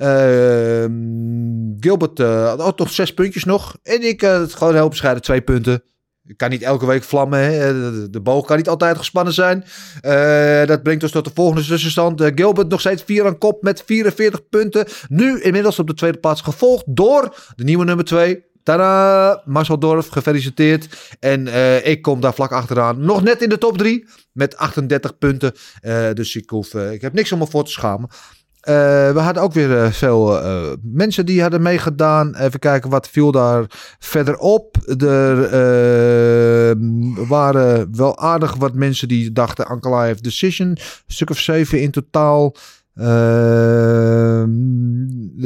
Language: Dutch